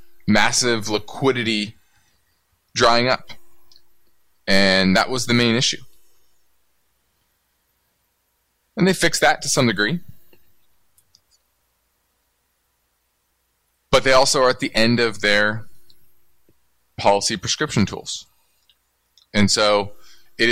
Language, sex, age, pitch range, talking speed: English, male, 20-39, 85-120 Hz, 95 wpm